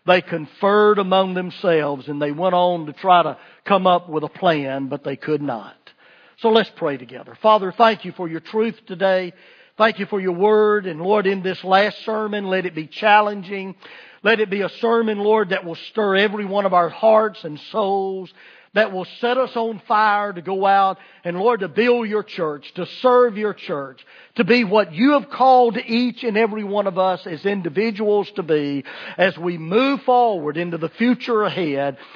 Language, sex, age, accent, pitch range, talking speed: English, male, 50-69, American, 170-215 Hz, 195 wpm